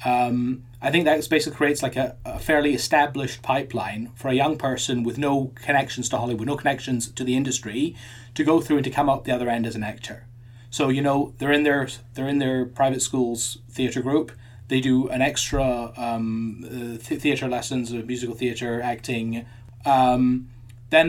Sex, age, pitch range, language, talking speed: male, 20-39, 120-135 Hz, English, 185 wpm